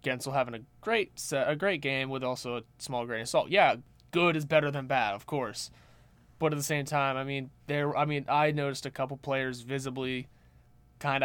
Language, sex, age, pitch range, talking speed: English, male, 20-39, 125-145 Hz, 215 wpm